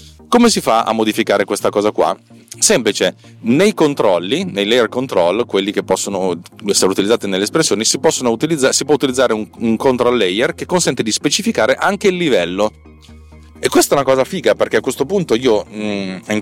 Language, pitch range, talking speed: Italian, 95-130 Hz, 175 wpm